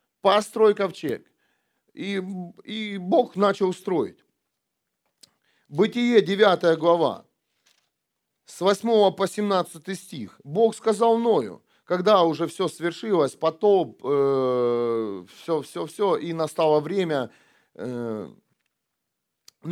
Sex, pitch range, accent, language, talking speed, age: male, 155-200 Hz, native, Russian, 90 wpm, 40-59